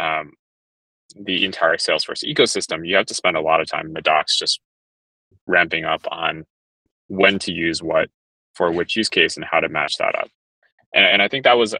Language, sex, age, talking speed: English, male, 20-39, 205 wpm